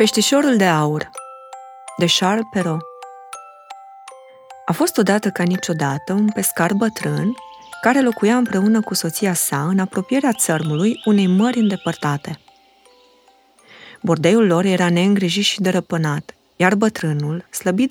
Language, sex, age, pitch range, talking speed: Romanian, female, 20-39, 160-220 Hz, 115 wpm